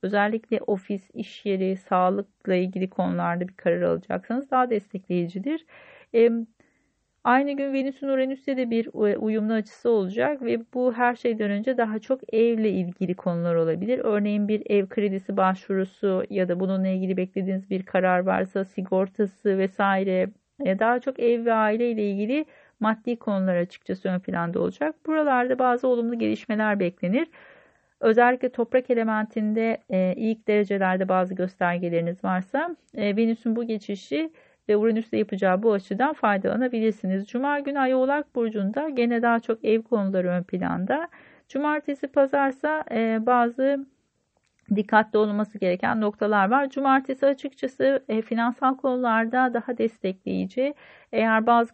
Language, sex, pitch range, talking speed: Turkish, female, 195-255 Hz, 135 wpm